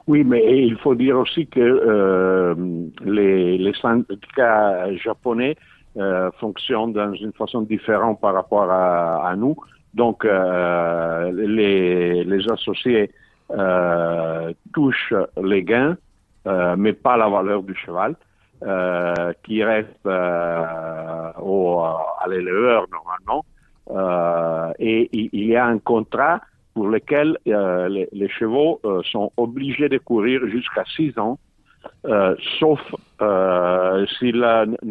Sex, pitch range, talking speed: male, 90-115 Hz, 120 wpm